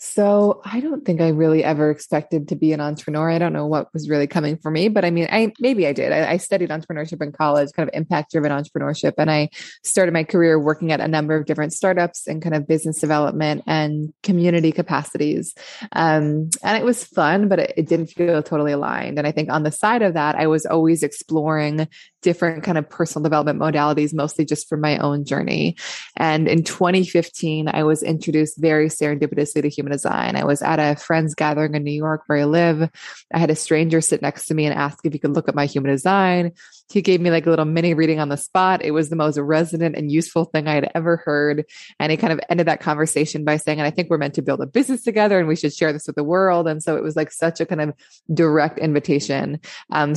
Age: 20-39